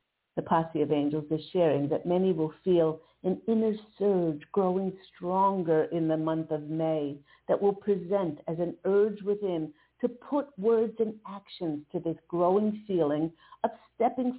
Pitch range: 160-205 Hz